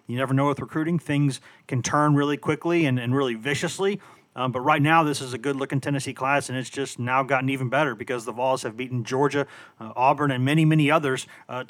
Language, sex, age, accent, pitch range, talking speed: English, male, 40-59, American, 130-155 Hz, 230 wpm